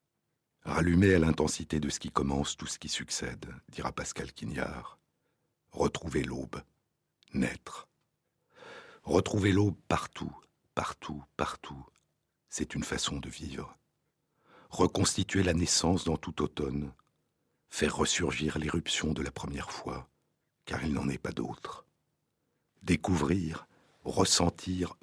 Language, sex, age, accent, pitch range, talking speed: French, male, 60-79, French, 75-100 Hz, 115 wpm